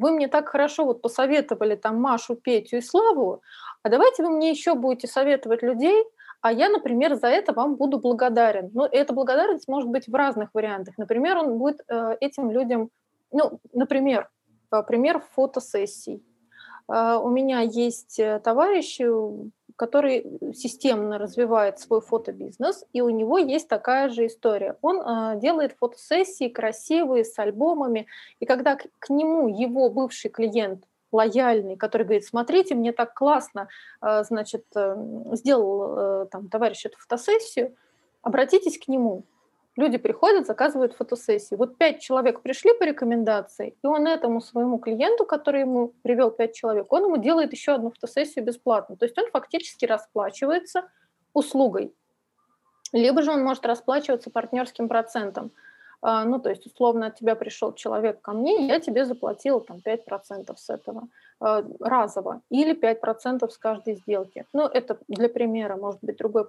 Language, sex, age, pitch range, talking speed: Russian, female, 20-39, 225-290 Hz, 145 wpm